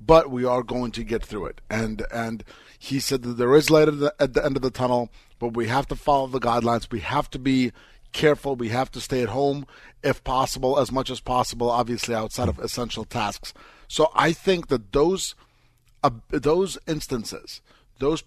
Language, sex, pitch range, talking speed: English, male, 120-145 Hz, 205 wpm